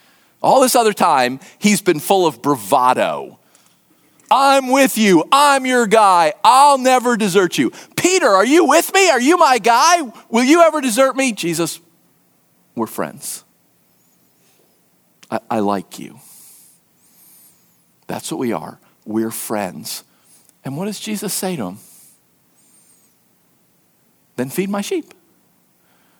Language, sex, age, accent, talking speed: English, male, 50-69, American, 130 wpm